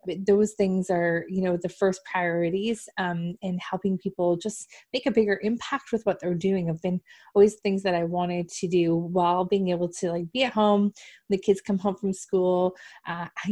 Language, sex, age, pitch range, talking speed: English, female, 20-39, 180-210 Hz, 200 wpm